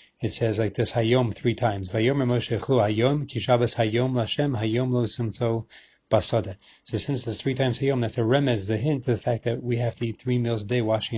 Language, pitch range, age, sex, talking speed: English, 110-125 Hz, 30-49, male, 165 wpm